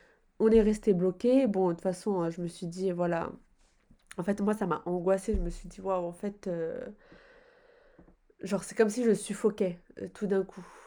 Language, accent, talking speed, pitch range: French, French, 205 wpm, 180-220 Hz